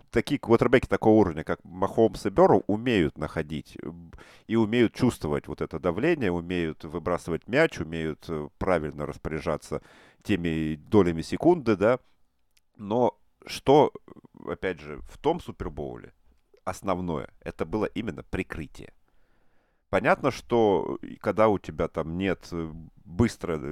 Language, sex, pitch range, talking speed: Russian, male, 80-105 Hz, 115 wpm